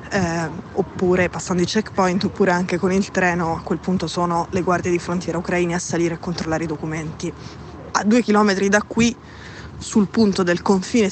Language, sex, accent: Italian, female, native